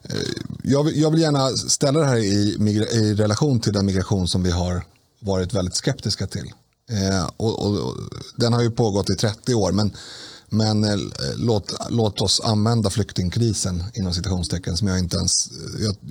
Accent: native